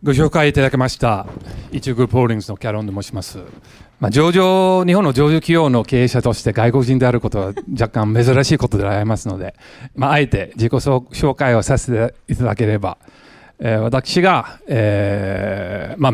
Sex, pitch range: male, 105-135 Hz